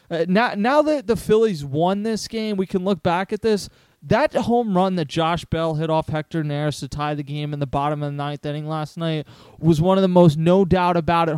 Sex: male